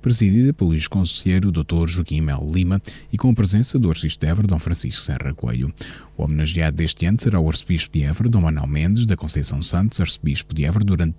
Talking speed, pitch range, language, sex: 195 wpm, 80-100 Hz, Portuguese, male